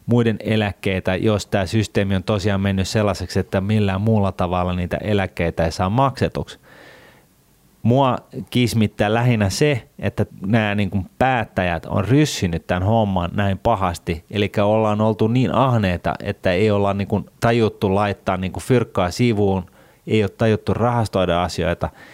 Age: 30-49